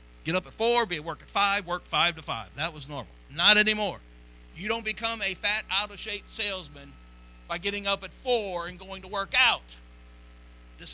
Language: English